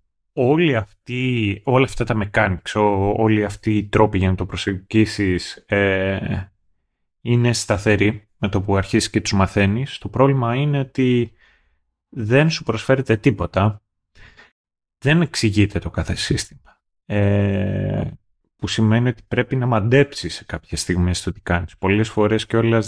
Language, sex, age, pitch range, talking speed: Greek, male, 30-49, 95-115 Hz, 140 wpm